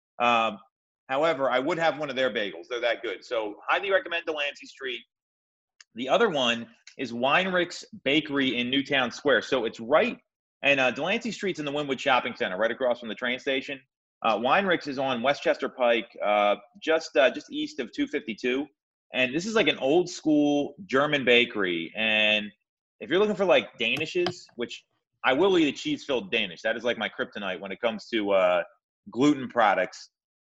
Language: English